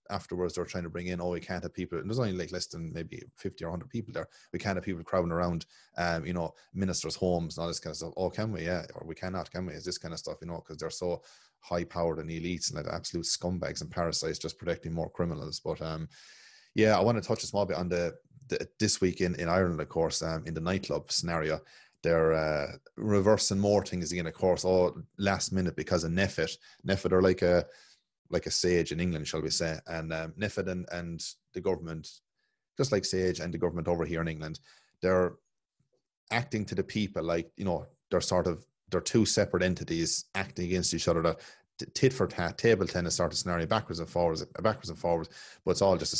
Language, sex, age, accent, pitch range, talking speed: English, male, 30-49, Irish, 85-95 Hz, 230 wpm